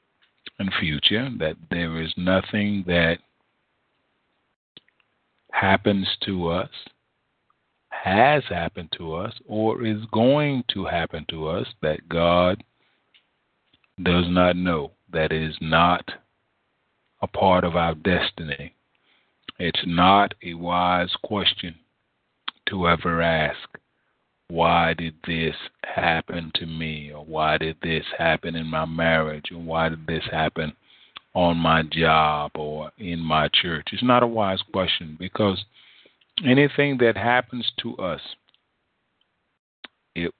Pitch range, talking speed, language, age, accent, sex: 80-95 Hz, 120 wpm, English, 40-59, American, male